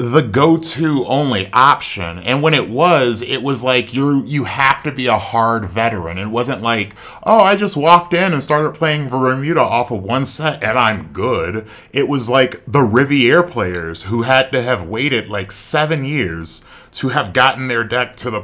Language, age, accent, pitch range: English, 30-49, American, 100-130 Hz